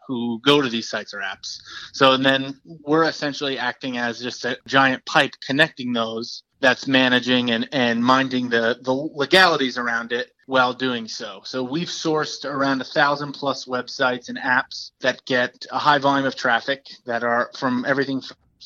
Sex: male